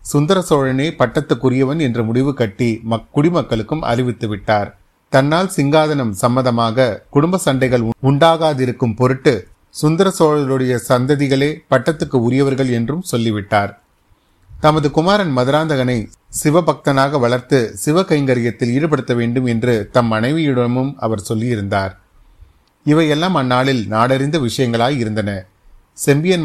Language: Tamil